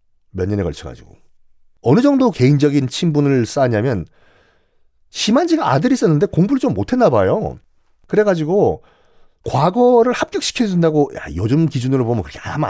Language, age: Korean, 40-59